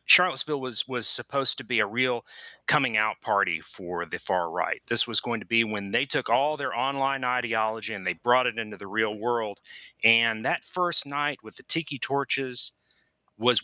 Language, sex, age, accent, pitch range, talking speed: English, male, 40-59, American, 110-140 Hz, 195 wpm